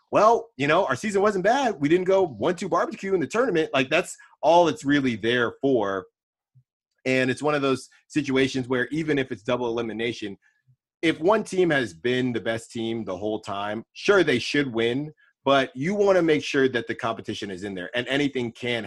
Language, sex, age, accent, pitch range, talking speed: English, male, 30-49, American, 115-145 Hz, 205 wpm